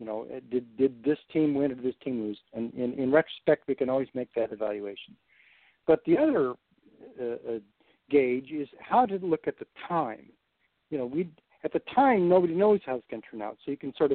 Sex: male